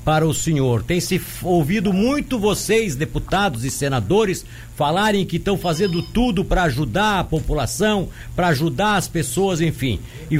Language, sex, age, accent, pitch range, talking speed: Portuguese, male, 60-79, Brazilian, 160-210 Hz, 150 wpm